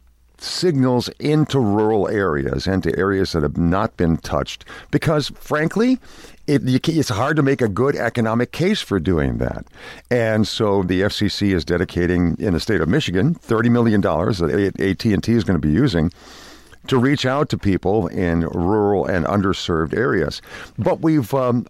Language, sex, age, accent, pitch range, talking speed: English, male, 50-69, American, 95-140 Hz, 170 wpm